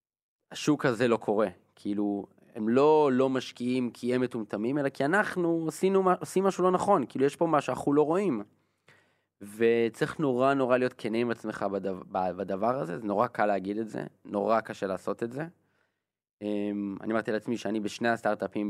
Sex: male